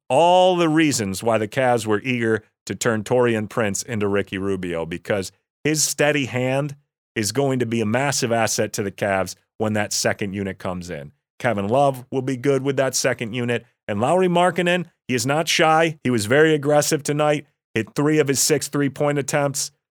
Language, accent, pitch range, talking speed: English, American, 110-150 Hz, 190 wpm